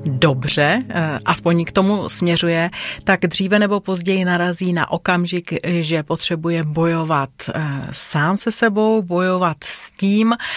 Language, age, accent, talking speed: Czech, 30-49, native, 120 wpm